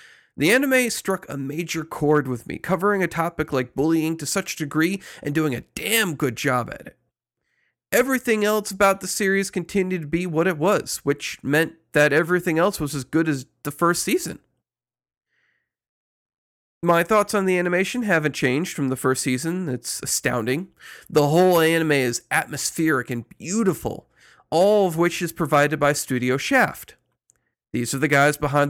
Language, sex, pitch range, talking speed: English, male, 140-185 Hz, 165 wpm